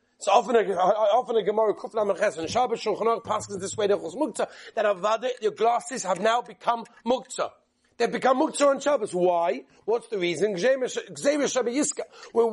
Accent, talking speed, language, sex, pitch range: British, 160 wpm, English, male, 205-260 Hz